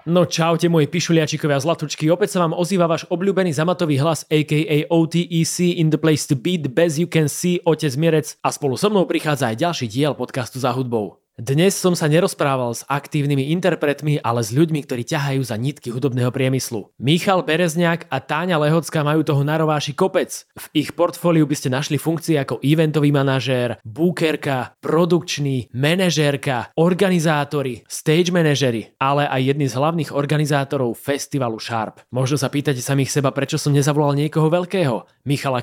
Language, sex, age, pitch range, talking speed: English, male, 20-39, 135-165 Hz, 165 wpm